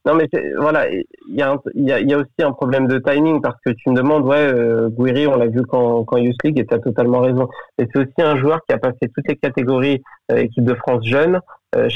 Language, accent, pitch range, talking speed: French, French, 120-140 Hz, 255 wpm